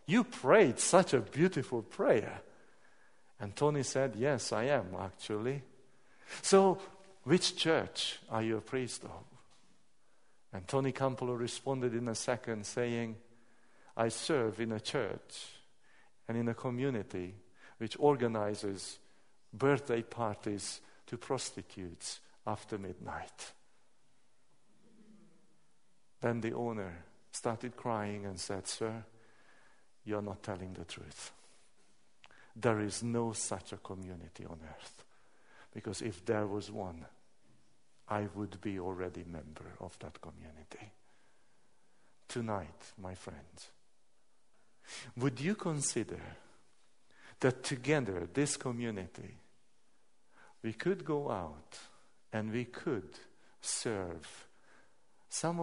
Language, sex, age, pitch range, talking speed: Danish, male, 50-69, 100-130 Hz, 110 wpm